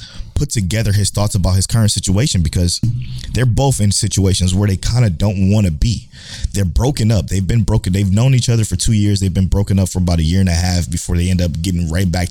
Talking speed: 255 wpm